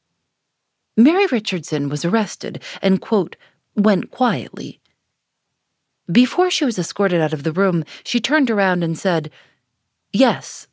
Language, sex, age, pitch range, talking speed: English, female, 40-59, 160-235 Hz, 125 wpm